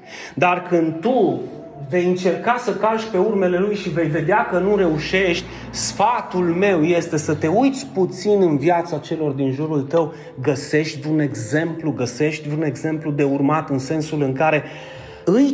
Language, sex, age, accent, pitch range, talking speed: Romanian, male, 30-49, native, 140-190 Hz, 160 wpm